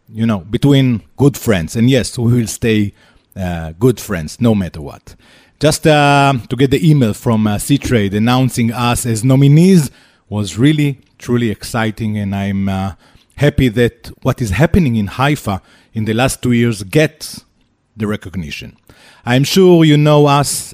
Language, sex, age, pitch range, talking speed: Hebrew, male, 30-49, 105-140 Hz, 160 wpm